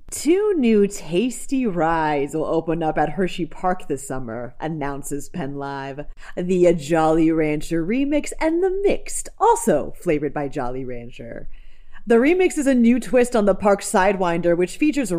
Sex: female